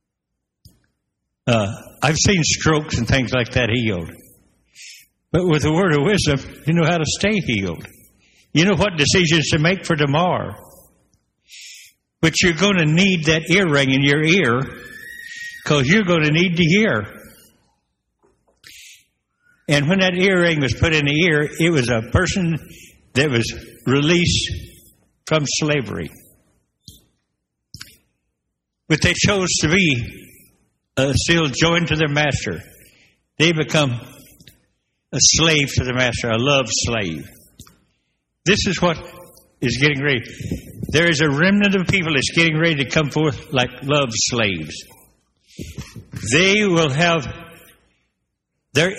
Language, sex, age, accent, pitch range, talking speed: English, male, 60-79, American, 120-170 Hz, 135 wpm